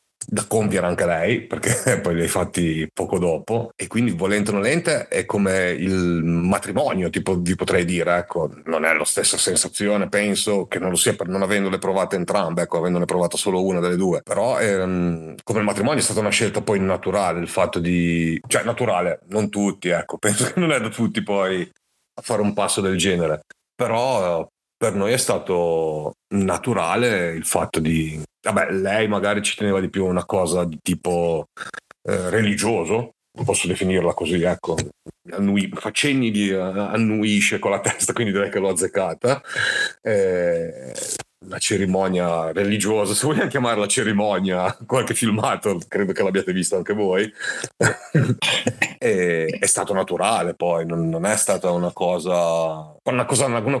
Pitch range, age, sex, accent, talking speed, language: 90-105 Hz, 40-59, male, native, 165 wpm, Italian